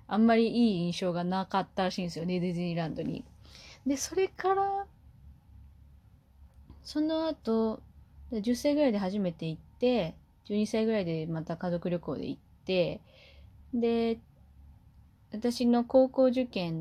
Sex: female